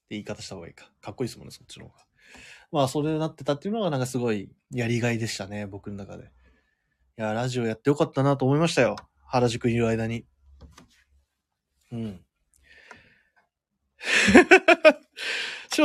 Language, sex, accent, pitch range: Japanese, male, native, 115-165 Hz